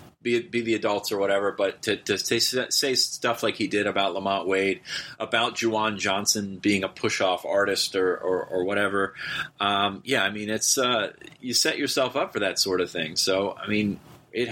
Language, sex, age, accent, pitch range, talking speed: English, male, 30-49, American, 100-120 Hz, 200 wpm